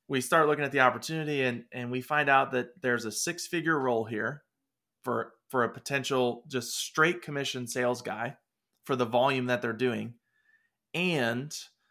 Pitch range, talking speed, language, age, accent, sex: 115-140 Hz, 170 wpm, English, 30-49, American, male